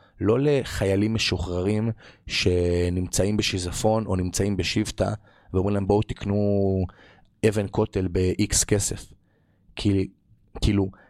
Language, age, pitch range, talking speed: Hebrew, 30-49, 90-110 Hz, 95 wpm